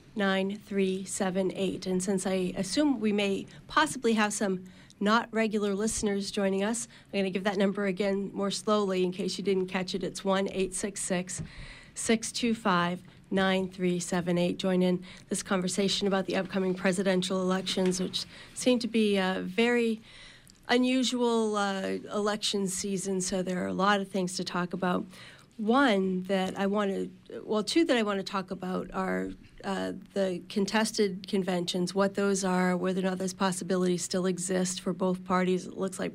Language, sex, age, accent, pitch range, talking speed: English, female, 40-59, American, 185-205 Hz, 180 wpm